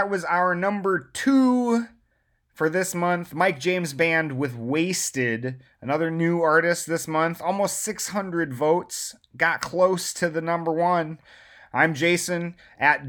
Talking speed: 140 wpm